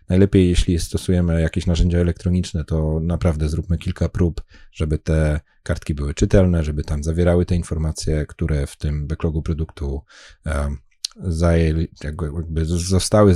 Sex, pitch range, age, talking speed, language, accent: male, 80-95 Hz, 30-49, 120 wpm, Polish, native